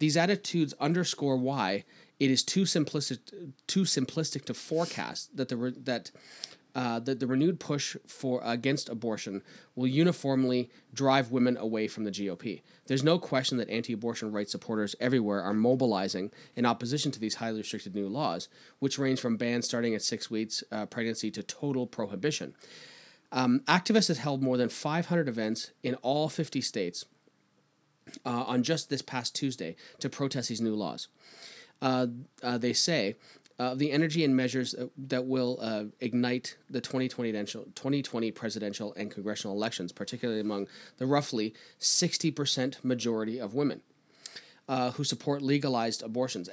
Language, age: English, 30-49